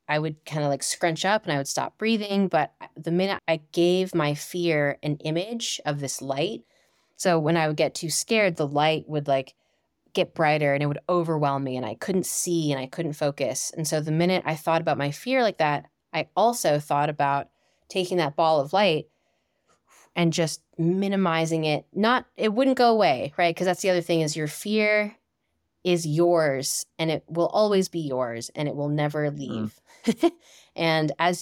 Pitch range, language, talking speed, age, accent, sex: 145-175 Hz, English, 195 wpm, 10-29, American, female